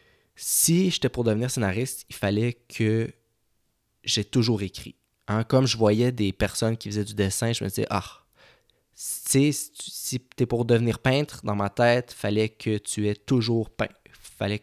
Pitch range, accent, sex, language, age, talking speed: 105-125 Hz, Canadian, male, French, 20-39, 185 wpm